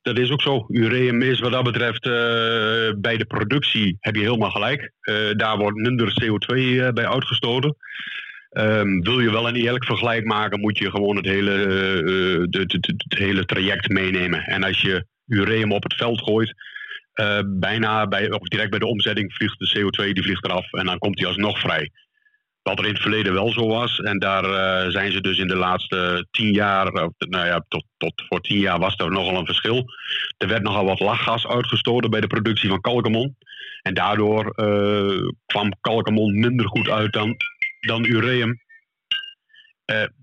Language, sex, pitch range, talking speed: Dutch, male, 100-120 Hz, 190 wpm